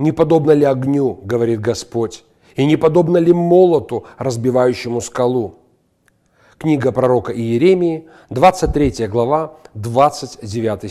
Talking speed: 105 wpm